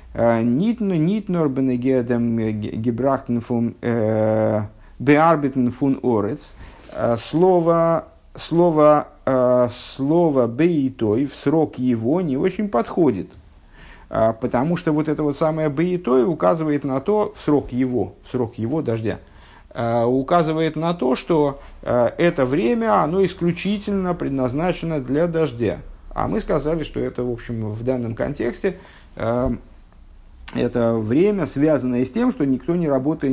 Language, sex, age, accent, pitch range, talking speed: Russian, male, 50-69, native, 110-155 Hz, 105 wpm